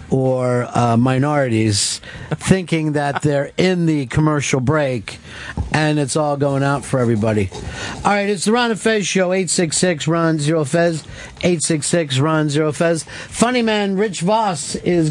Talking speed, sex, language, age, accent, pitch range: 125 wpm, male, English, 50-69, American, 145-190 Hz